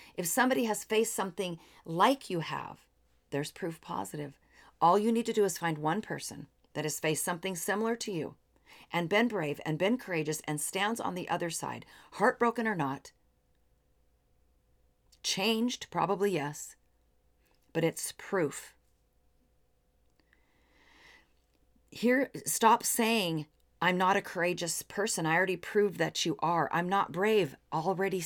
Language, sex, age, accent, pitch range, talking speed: English, female, 40-59, American, 155-205 Hz, 140 wpm